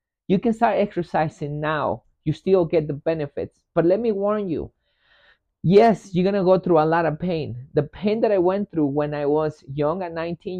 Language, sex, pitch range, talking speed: English, male, 145-180 Hz, 205 wpm